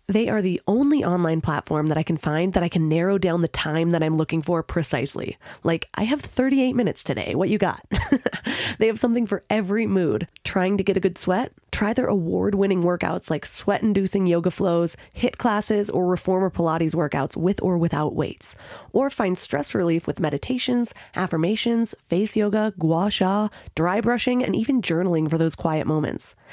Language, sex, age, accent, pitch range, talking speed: English, female, 20-39, American, 165-210 Hz, 185 wpm